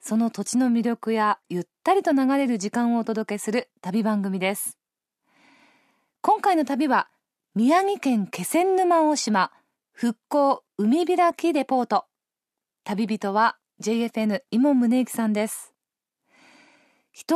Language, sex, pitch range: Japanese, female, 210-290 Hz